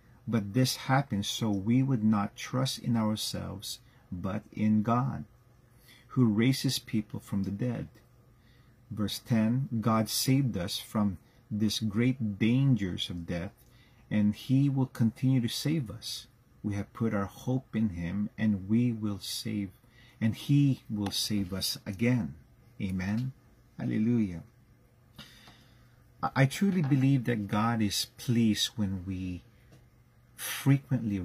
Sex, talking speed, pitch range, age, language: male, 125 wpm, 105-120 Hz, 40-59, English